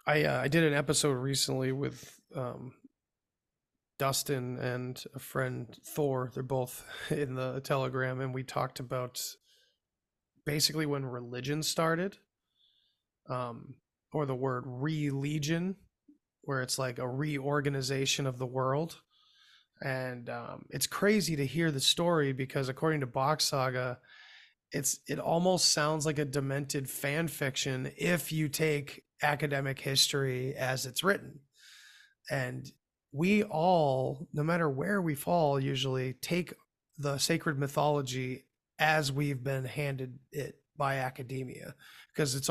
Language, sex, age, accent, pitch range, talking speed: English, male, 20-39, American, 130-155 Hz, 130 wpm